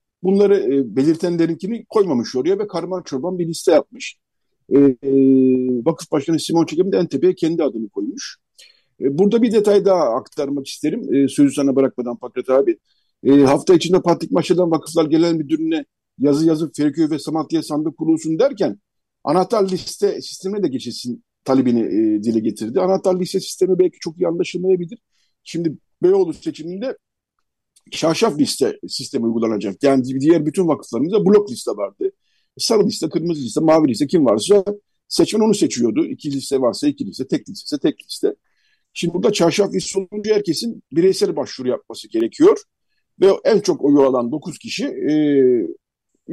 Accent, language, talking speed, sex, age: native, Turkish, 160 wpm, male, 50-69